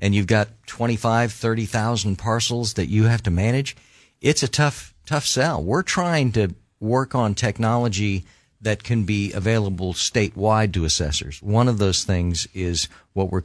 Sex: male